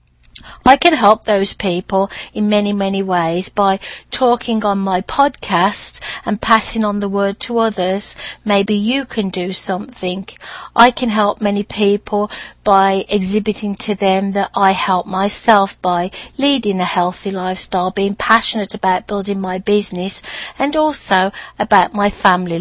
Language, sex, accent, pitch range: English, female, British, 190-215 Hz